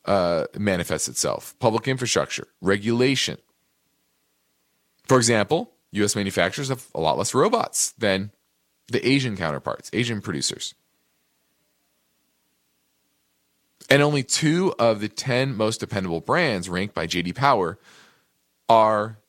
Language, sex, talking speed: English, male, 110 wpm